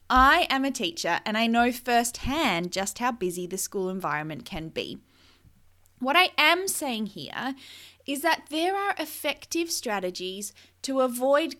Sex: female